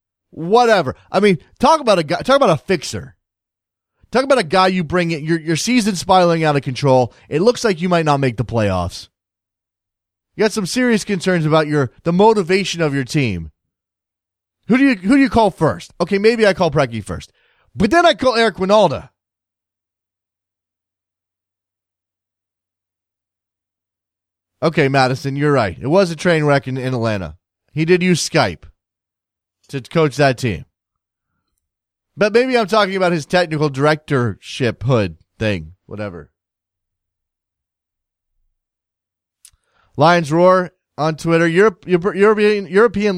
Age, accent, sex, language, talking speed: 30-49, American, male, English, 145 wpm